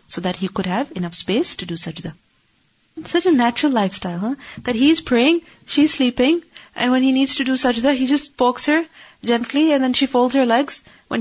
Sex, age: female, 30-49